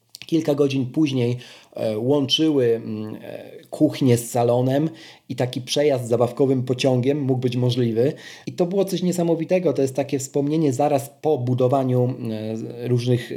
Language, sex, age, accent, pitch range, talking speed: Polish, male, 40-59, native, 120-150 Hz, 130 wpm